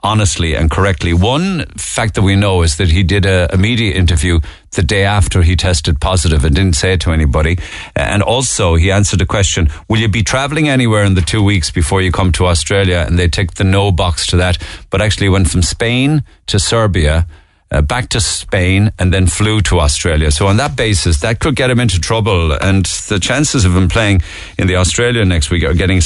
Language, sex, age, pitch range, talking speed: English, male, 50-69, 85-110 Hz, 220 wpm